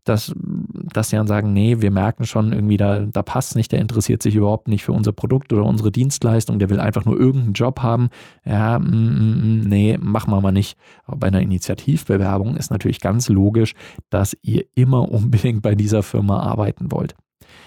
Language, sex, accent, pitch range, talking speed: German, male, German, 100-120 Hz, 190 wpm